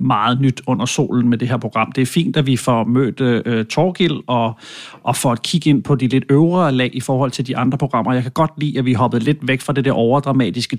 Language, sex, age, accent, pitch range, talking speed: English, male, 40-59, Danish, 125-150 Hz, 260 wpm